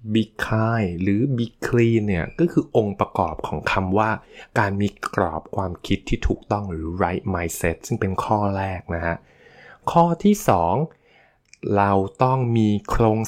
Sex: male